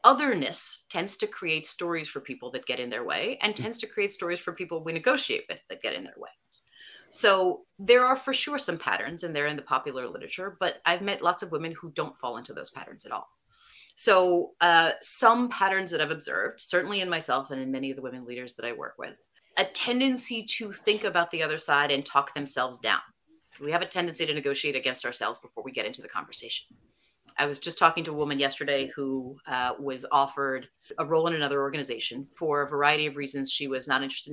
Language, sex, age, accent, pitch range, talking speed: English, female, 30-49, American, 140-195 Hz, 220 wpm